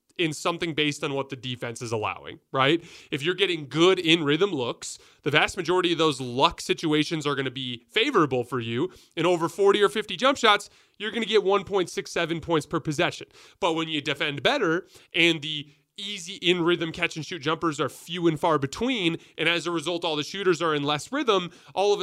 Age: 30-49